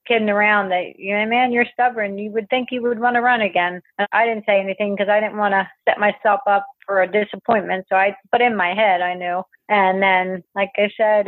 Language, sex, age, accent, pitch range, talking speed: English, female, 30-49, American, 195-225 Hz, 240 wpm